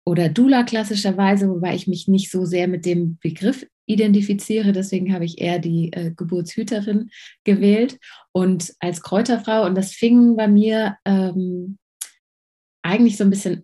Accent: German